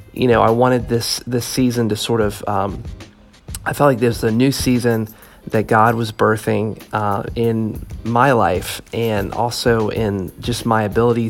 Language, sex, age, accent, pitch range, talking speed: English, male, 30-49, American, 105-115 Hz, 170 wpm